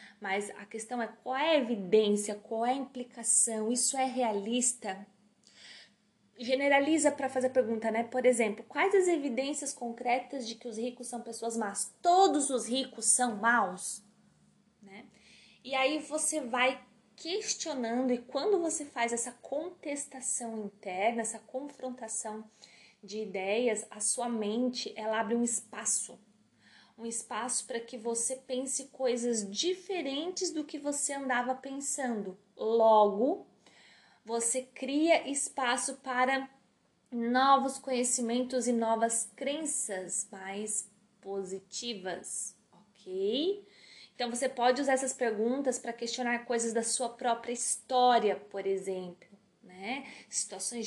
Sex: female